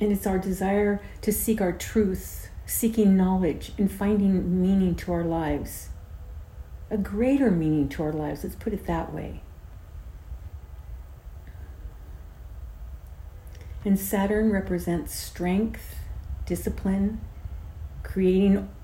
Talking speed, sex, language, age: 105 wpm, female, English, 50-69